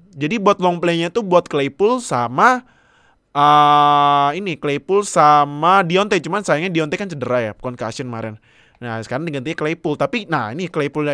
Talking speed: 155 wpm